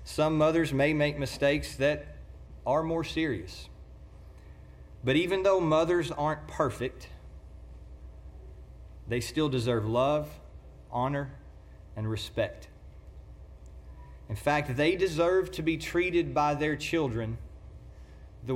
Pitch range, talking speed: 95-155 Hz, 105 wpm